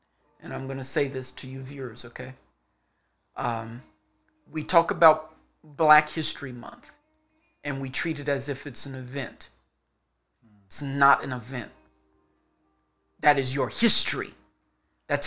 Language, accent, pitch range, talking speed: English, American, 140-195 Hz, 140 wpm